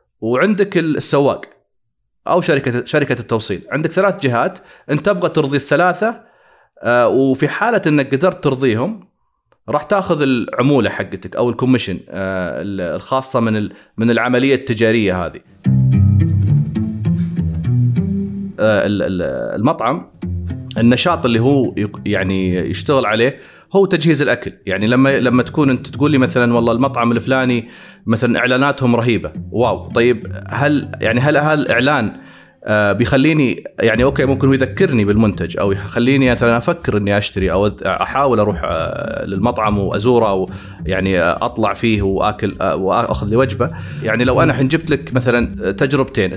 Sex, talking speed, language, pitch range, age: male, 120 wpm, Arabic, 100-140 Hz, 30-49